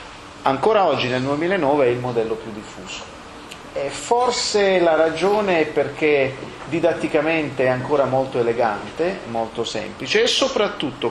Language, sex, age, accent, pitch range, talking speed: Italian, male, 40-59, native, 120-175 Hz, 125 wpm